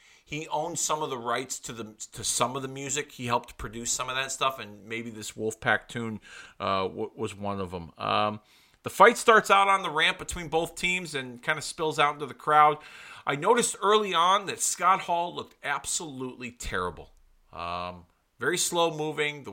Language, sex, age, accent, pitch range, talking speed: English, male, 30-49, American, 105-150 Hz, 195 wpm